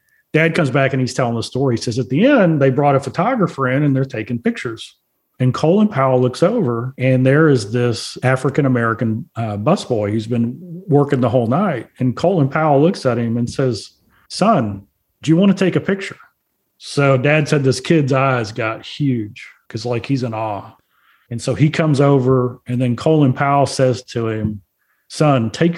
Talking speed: 190 wpm